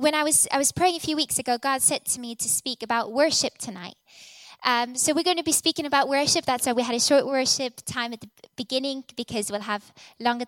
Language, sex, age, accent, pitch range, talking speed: English, female, 10-29, British, 235-290 Hz, 245 wpm